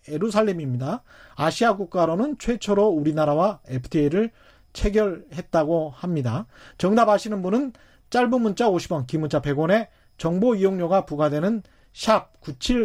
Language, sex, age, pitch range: Korean, male, 30-49, 150-215 Hz